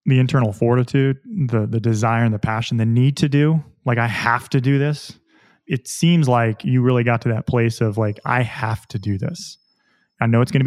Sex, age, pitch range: male, 30-49, 115-145 Hz